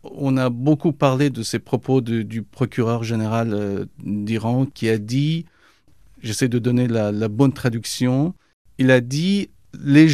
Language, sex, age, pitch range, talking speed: French, male, 50-69, 115-165 Hz, 155 wpm